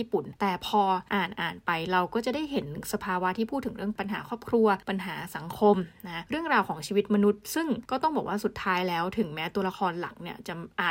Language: Thai